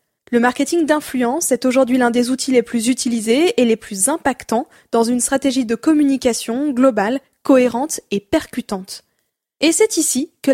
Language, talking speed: French, 160 wpm